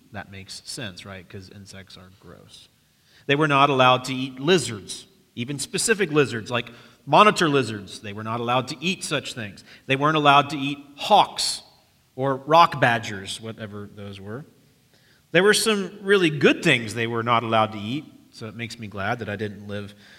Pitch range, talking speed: 110-150 Hz, 185 wpm